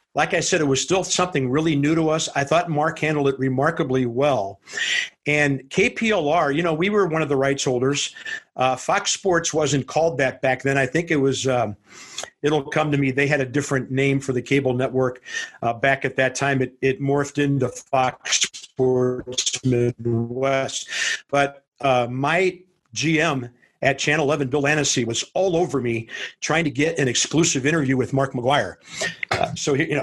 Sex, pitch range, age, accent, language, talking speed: male, 130-155 Hz, 50-69, American, English, 185 wpm